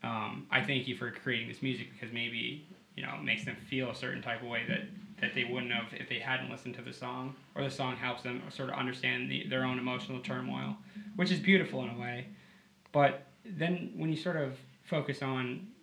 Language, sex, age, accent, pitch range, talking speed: English, male, 20-39, American, 115-140 Hz, 230 wpm